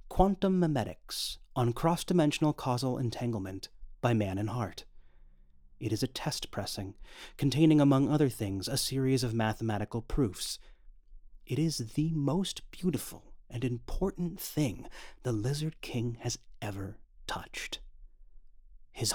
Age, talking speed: 30-49, 120 wpm